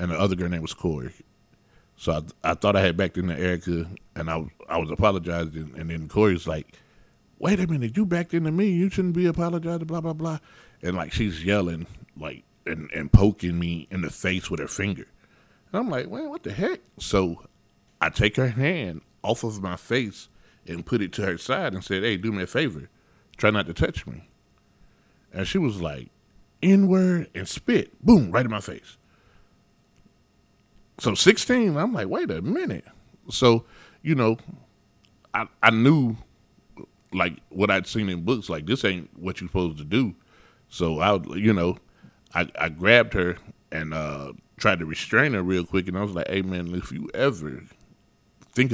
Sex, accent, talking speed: male, American, 190 wpm